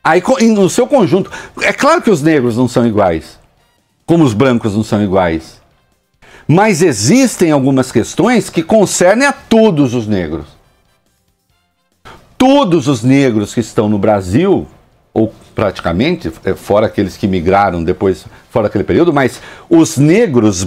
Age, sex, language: 60-79, male, English